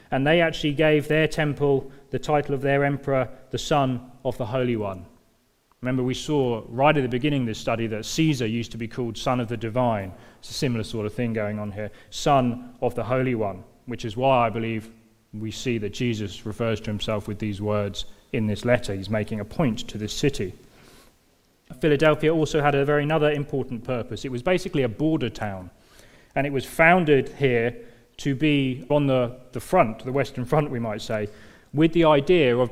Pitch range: 110-135 Hz